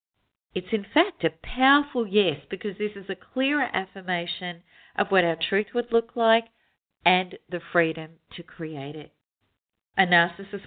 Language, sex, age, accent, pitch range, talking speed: English, female, 50-69, Australian, 165-220 Hz, 150 wpm